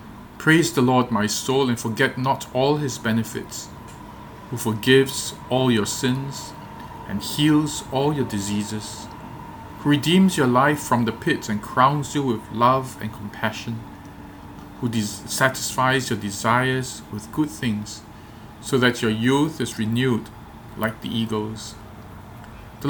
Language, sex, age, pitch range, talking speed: English, male, 40-59, 110-130 Hz, 135 wpm